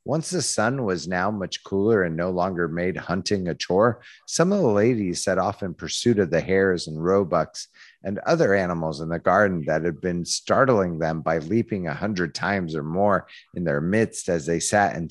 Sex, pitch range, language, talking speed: male, 90-120 Hz, English, 205 wpm